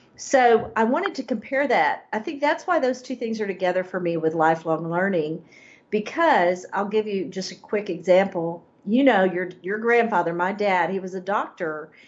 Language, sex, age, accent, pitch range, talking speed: English, female, 50-69, American, 165-220 Hz, 195 wpm